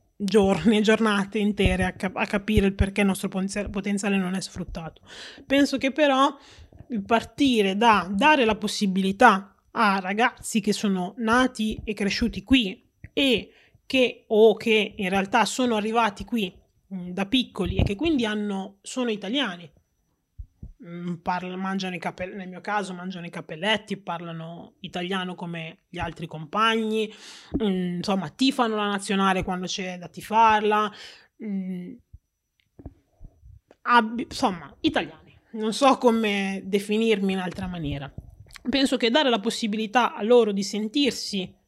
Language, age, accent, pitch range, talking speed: Italian, 20-39, native, 190-230 Hz, 130 wpm